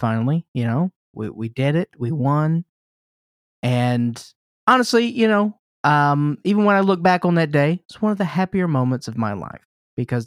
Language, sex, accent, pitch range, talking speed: English, male, American, 120-165 Hz, 185 wpm